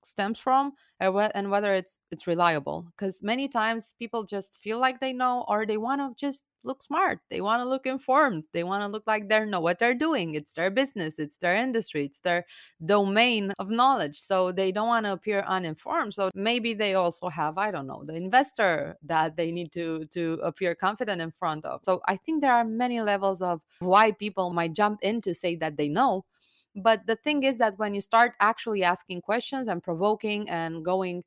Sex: female